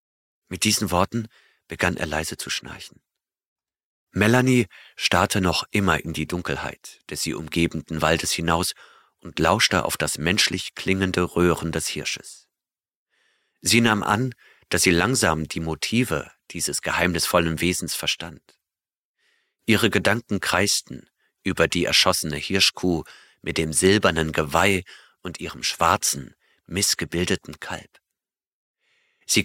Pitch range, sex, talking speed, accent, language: 85-105 Hz, male, 120 wpm, German, German